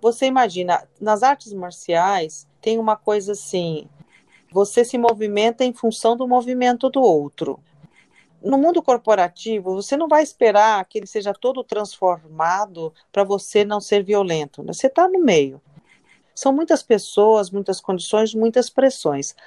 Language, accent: Portuguese, Brazilian